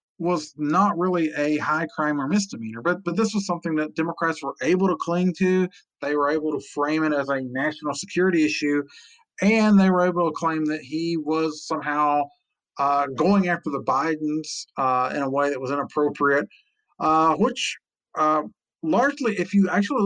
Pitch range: 145-185 Hz